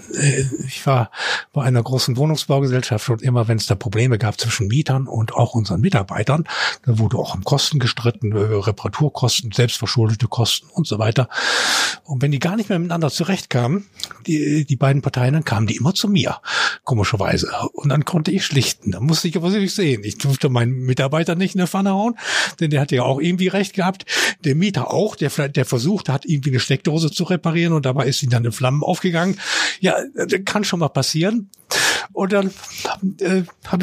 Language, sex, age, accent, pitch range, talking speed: German, male, 60-79, German, 130-180 Hz, 190 wpm